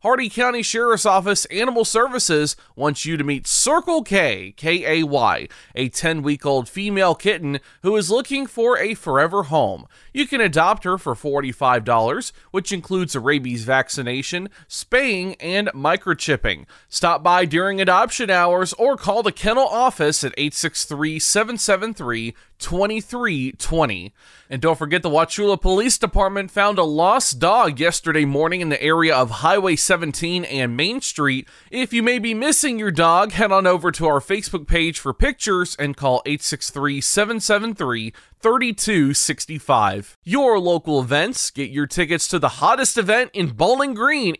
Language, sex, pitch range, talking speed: English, male, 145-215 Hz, 145 wpm